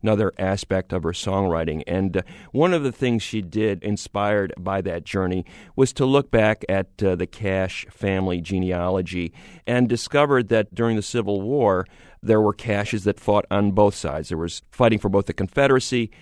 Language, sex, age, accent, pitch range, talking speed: English, male, 40-59, American, 95-120 Hz, 180 wpm